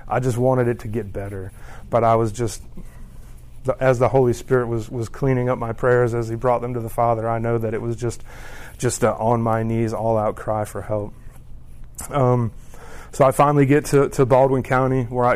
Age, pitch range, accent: 30-49, 115-130 Hz, American